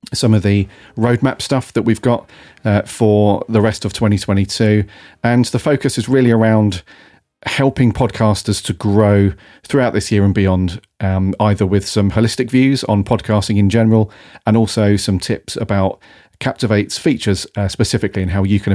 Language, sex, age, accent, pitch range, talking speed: English, male, 40-59, British, 100-115 Hz, 165 wpm